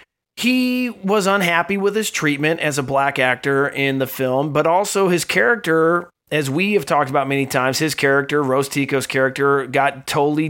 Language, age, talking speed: English, 30-49, 175 wpm